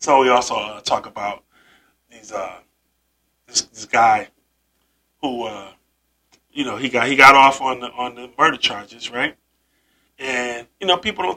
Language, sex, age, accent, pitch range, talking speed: English, male, 20-39, American, 100-155 Hz, 170 wpm